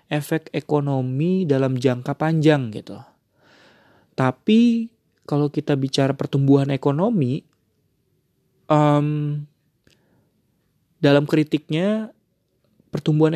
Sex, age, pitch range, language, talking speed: male, 30-49, 130-155 Hz, Indonesian, 70 wpm